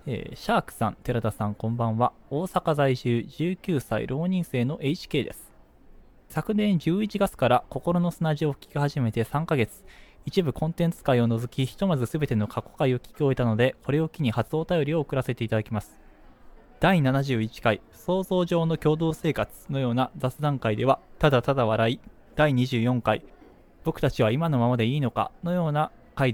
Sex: male